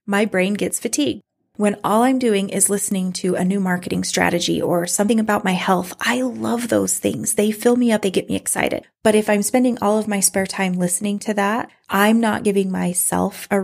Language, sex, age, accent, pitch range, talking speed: English, female, 20-39, American, 185-215 Hz, 215 wpm